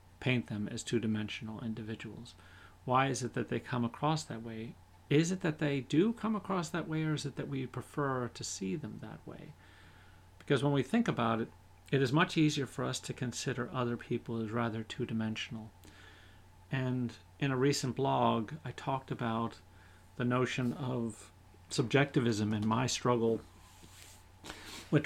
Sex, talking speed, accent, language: male, 165 wpm, American, English